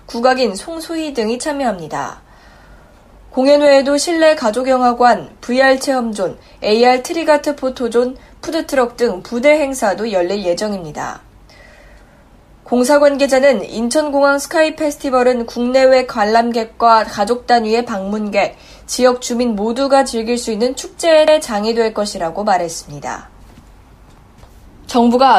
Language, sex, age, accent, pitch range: Korean, female, 20-39, native, 220-275 Hz